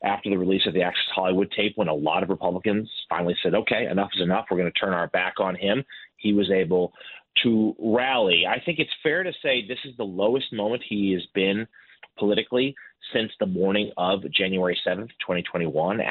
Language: English